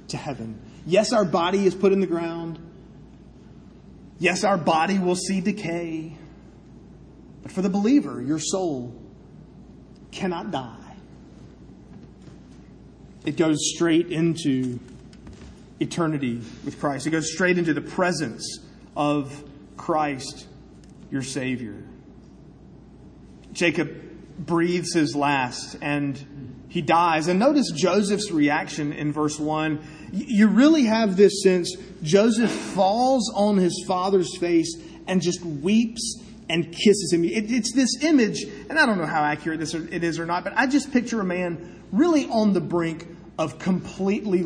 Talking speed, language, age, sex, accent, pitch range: 135 wpm, English, 30-49, male, American, 155-200 Hz